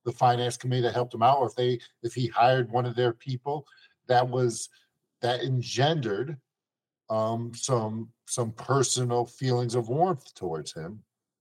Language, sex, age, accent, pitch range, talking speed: English, male, 50-69, American, 115-155 Hz, 160 wpm